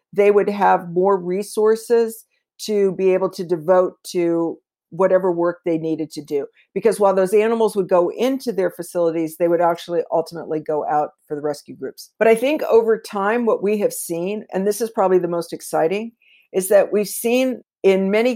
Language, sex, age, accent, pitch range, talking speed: English, female, 50-69, American, 170-205 Hz, 190 wpm